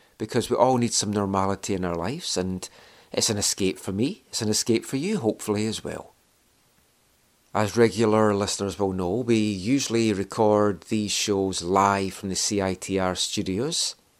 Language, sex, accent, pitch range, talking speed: English, male, British, 100-120 Hz, 160 wpm